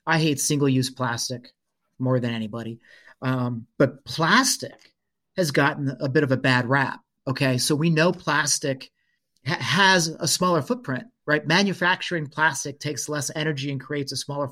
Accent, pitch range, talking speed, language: American, 135-160 Hz, 155 wpm, English